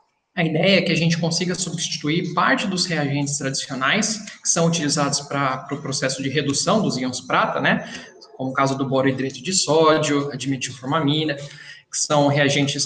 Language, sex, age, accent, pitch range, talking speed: Portuguese, male, 20-39, Brazilian, 135-170 Hz, 175 wpm